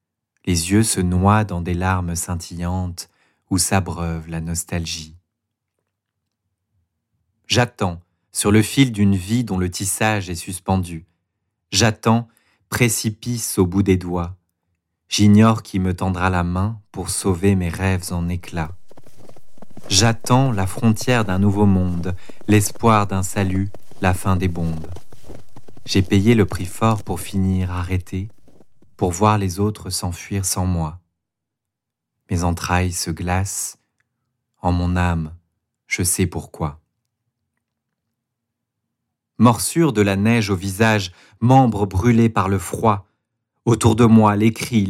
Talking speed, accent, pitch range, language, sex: 125 wpm, French, 90-110 Hz, French, male